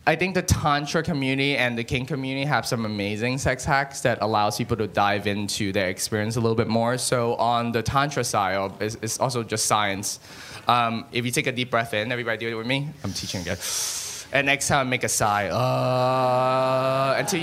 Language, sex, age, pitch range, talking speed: English, male, 20-39, 110-135 Hz, 205 wpm